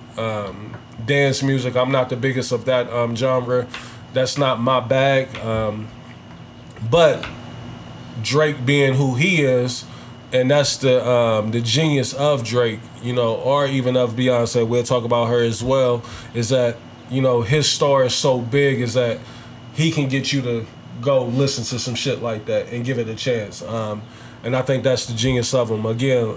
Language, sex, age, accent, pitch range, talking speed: English, male, 20-39, American, 120-135 Hz, 180 wpm